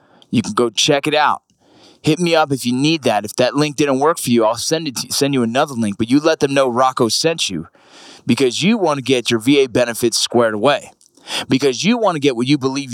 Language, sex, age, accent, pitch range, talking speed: English, male, 30-49, American, 120-155 Hz, 255 wpm